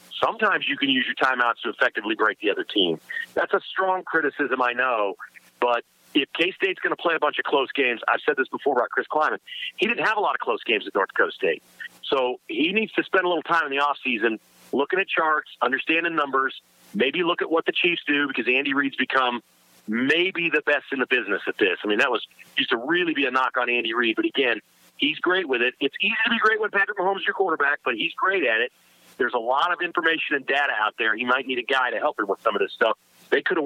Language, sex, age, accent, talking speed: English, male, 40-59, American, 255 wpm